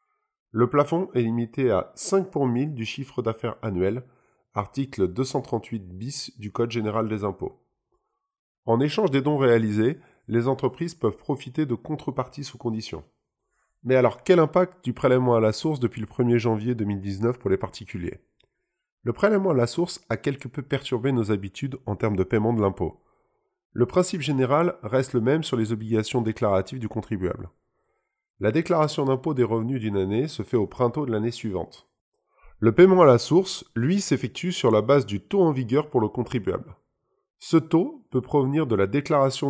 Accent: French